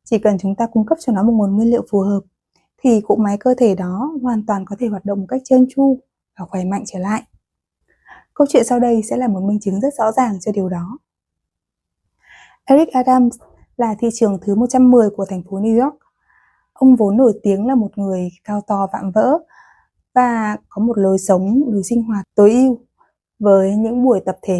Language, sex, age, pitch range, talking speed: Vietnamese, female, 20-39, 200-255 Hz, 215 wpm